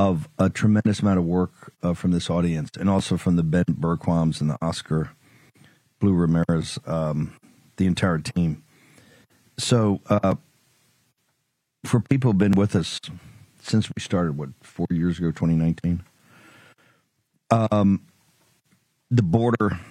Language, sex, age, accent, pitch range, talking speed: English, male, 50-69, American, 85-110 Hz, 135 wpm